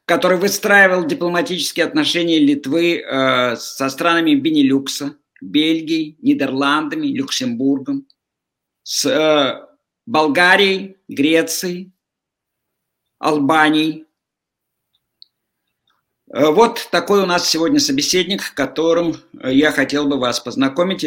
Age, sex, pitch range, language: 50-69, male, 145-225 Hz, Russian